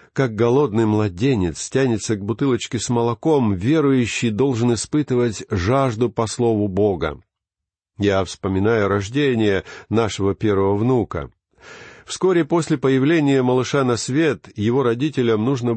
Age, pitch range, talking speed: 50-69, 105-140 Hz, 115 wpm